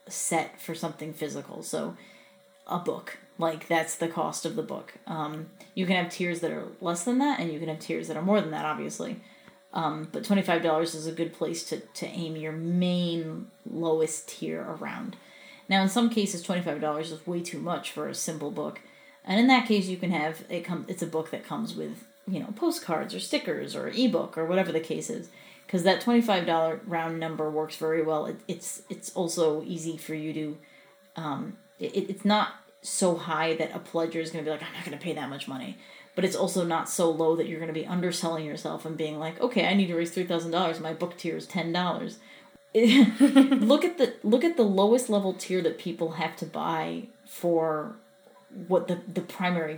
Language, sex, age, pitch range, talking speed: English, female, 30-49, 160-195 Hz, 210 wpm